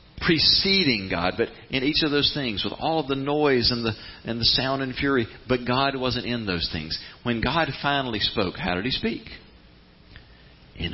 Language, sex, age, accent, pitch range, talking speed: English, male, 40-59, American, 85-125 Hz, 190 wpm